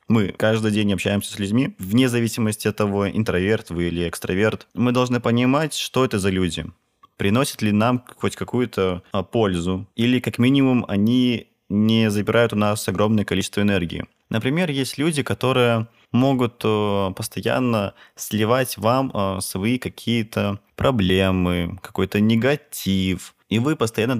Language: Russian